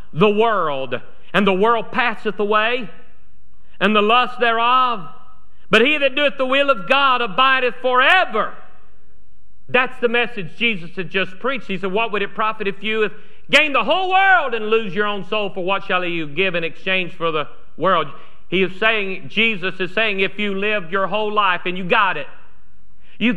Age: 50-69